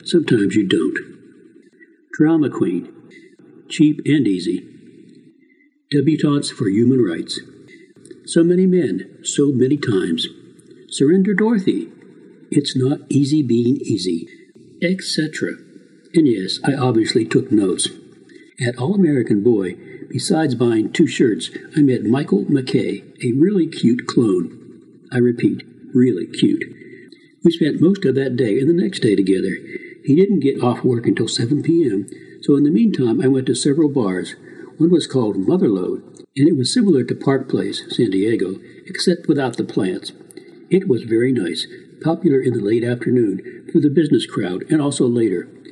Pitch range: 130-185 Hz